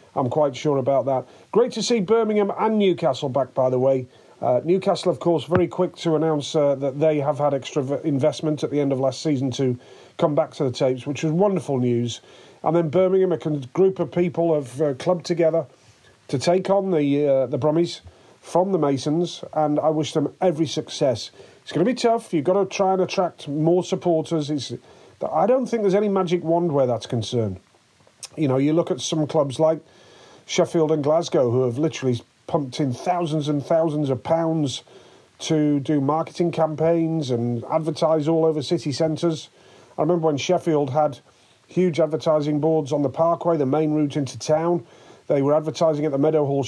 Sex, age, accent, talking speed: male, 40-59, British, 195 wpm